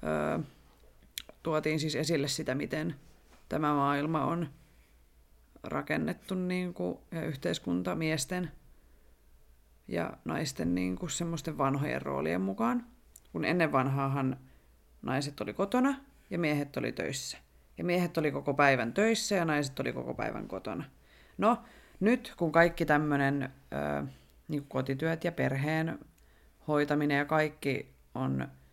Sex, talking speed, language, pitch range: female, 125 wpm, Finnish, 130-165 Hz